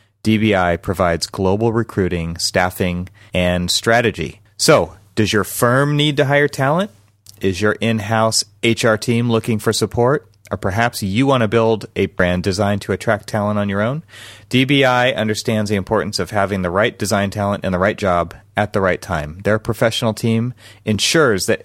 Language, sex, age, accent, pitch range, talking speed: English, male, 30-49, American, 100-115 Hz, 170 wpm